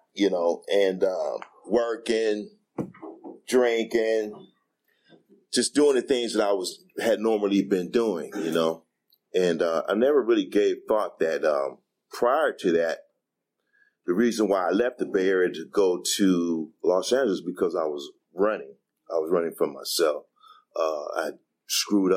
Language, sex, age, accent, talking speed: English, male, 40-59, American, 155 wpm